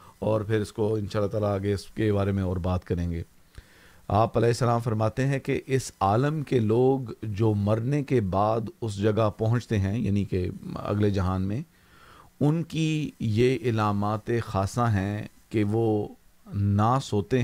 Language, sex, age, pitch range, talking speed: Urdu, male, 40-59, 100-120 Hz, 160 wpm